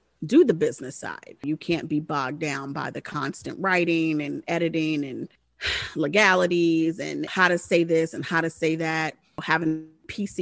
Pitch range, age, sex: 160-195 Hz, 30-49, female